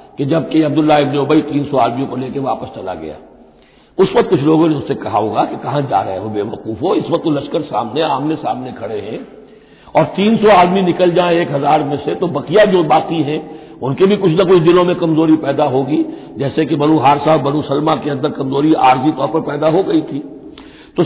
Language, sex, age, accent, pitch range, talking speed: Hindi, male, 60-79, native, 150-195 Hz, 225 wpm